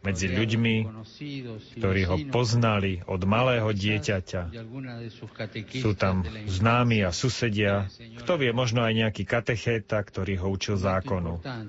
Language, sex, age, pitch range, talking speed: Slovak, male, 40-59, 100-130 Hz, 120 wpm